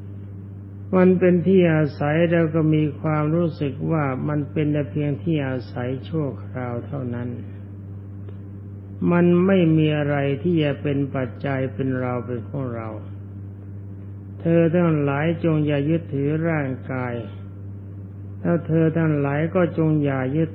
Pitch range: 100-150 Hz